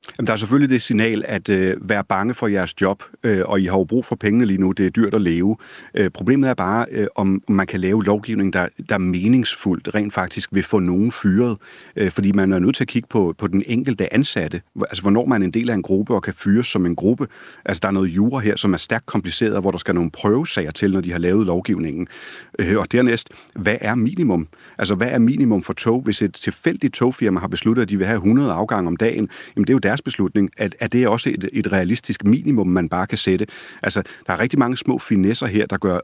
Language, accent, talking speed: Danish, native, 255 wpm